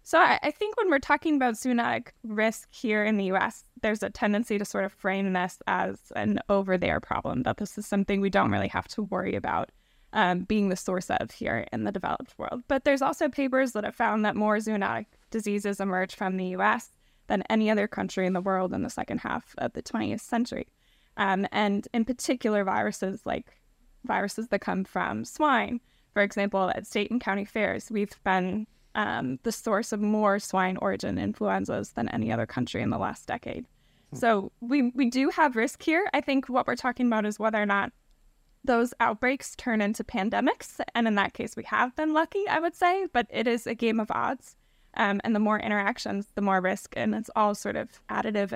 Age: 10-29